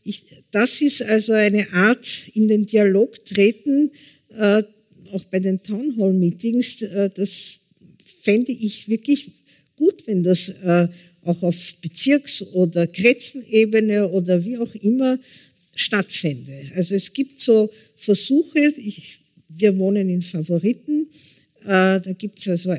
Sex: female